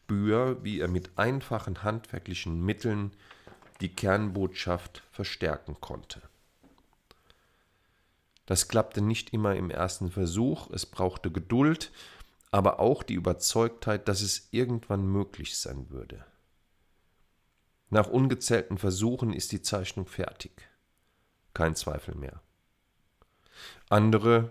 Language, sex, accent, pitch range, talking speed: German, male, German, 90-110 Hz, 100 wpm